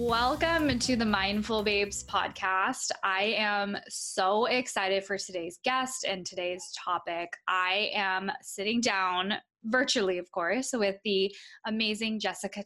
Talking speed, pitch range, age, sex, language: 130 wpm, 185-225 Hz, 10-29, female, English